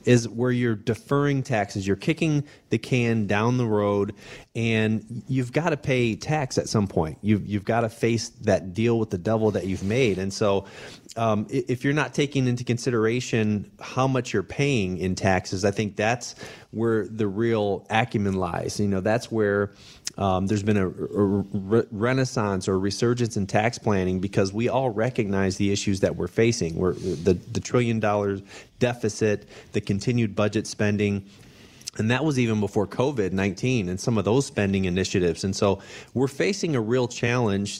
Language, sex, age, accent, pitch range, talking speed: English, male, 30-49, American, 100-120 Hz, 175 wpm